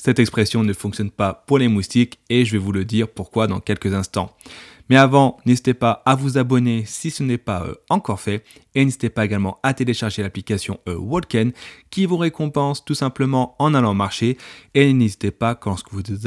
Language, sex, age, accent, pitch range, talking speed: French, male, 30-49, French, 105-135 Hz, 190 wpm